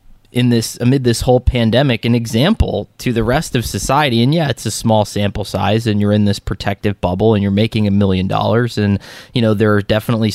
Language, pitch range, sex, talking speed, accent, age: English, 100-125 Hz, male, 220 wpm, American, 20-39